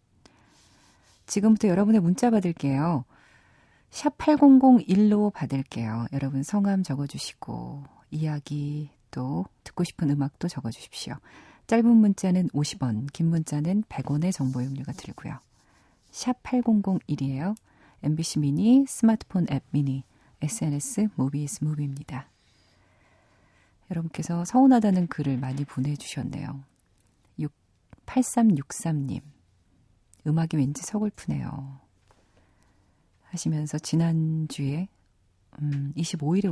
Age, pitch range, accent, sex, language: 40-59, 135-175 Hz, native, female, Korean